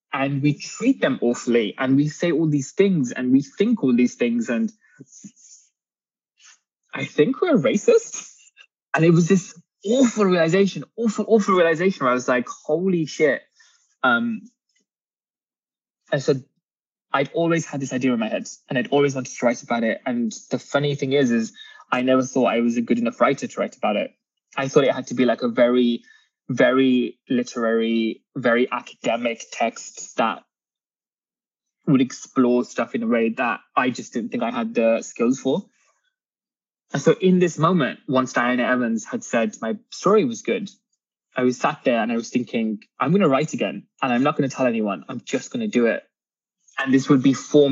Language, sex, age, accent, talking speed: English, male, 20-39, British, 190 wpm